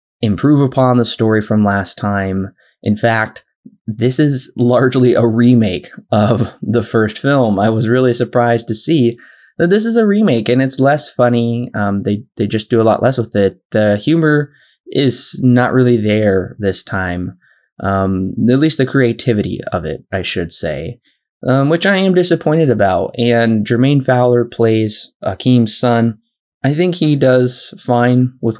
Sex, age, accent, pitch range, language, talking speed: male, 20-39, American, 105-125 Hz, English, 165 wpm